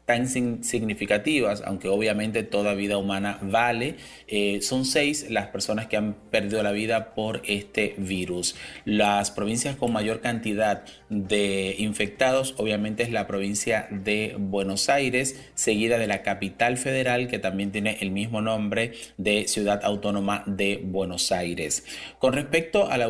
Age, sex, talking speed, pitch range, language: 30-49, male, 145 wpm, 100-120 Hz, Spanish